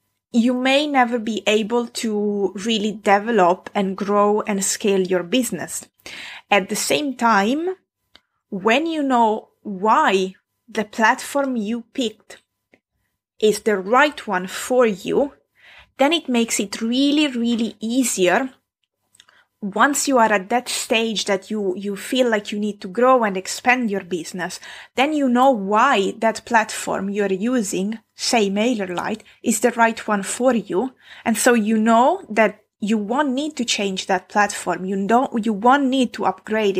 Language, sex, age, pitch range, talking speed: English, female, 20-39, 205-250 Hz, 155 wpm